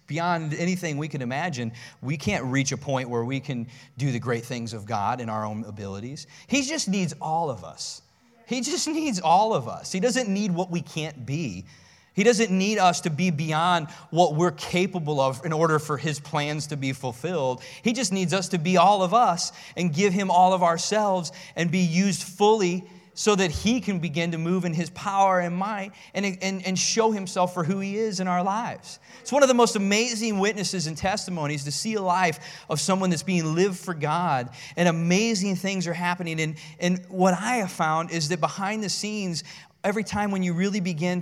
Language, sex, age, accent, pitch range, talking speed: English, male, 30-49, American, 155-200 Hz, 215 wpm